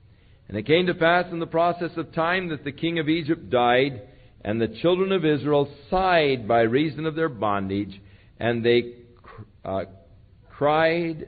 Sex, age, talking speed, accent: male, 50-69, 165 wpm, American